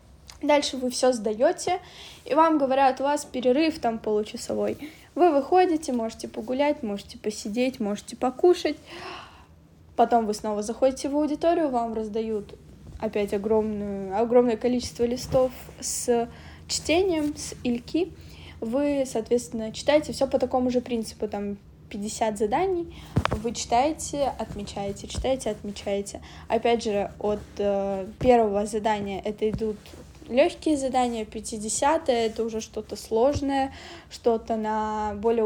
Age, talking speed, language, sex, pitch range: 10-29, 120 wpm, Russian, female, 220-265 Hz